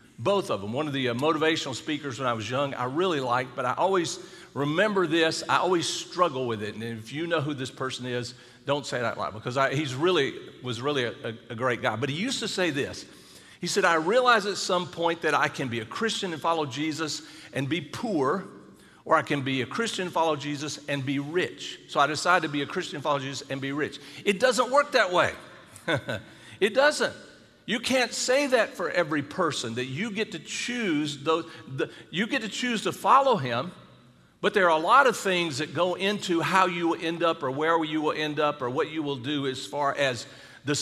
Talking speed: 230 wpm